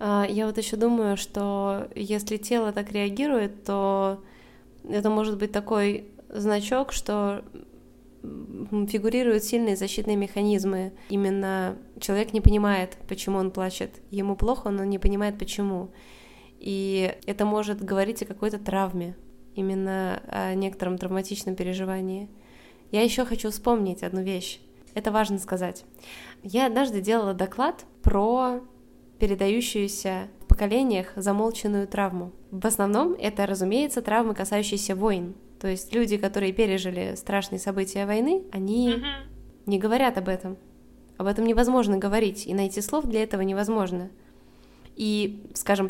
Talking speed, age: 125 wpm, 20-39